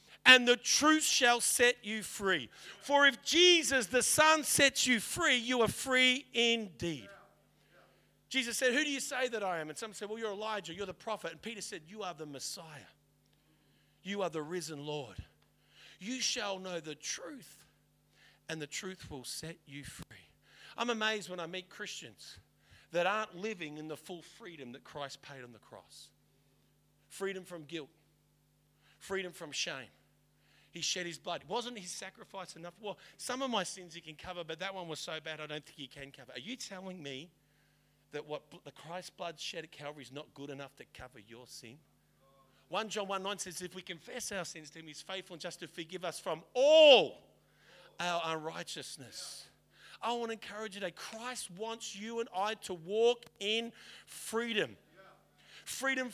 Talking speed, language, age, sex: 185 wpm, English, 50-69, male